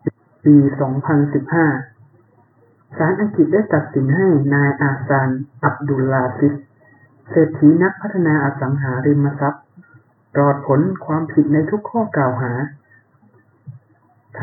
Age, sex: 60-79, male